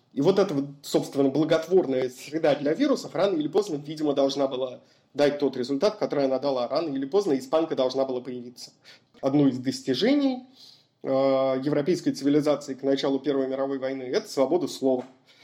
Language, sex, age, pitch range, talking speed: Russian, male, 30-49, 130-175 Hz, 155 wpm